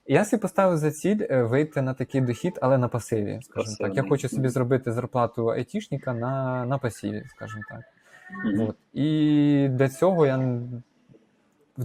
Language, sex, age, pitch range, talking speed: Ukrainian, male, 20-39, 115-135 Hz, 155 wpm